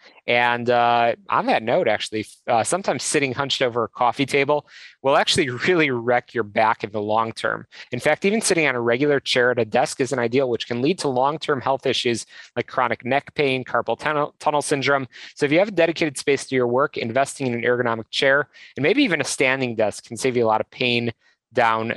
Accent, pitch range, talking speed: American, 115-140 Hz, 225 wpm